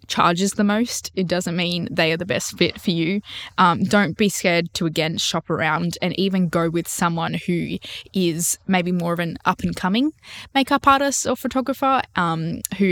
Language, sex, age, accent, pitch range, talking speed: English, female, 10-29, Australian, 170-205 Hz, 180 wpm